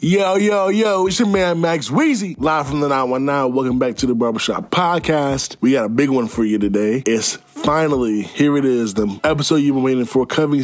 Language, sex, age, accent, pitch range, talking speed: English, male, 20-39, American, 100-135 Hz, 215 wpm